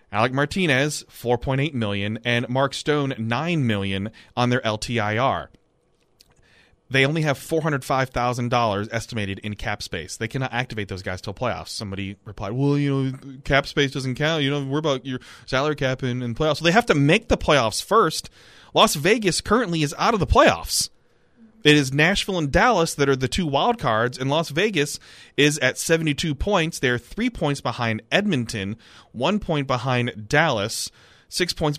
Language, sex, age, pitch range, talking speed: English, male, 30-49, 120-155 Hz, 185 wpm